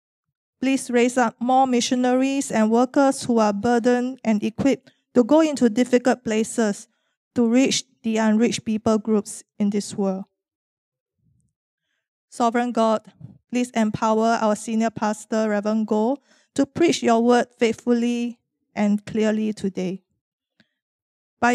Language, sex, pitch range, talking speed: English, female, 215-245 Hz, 125 wpm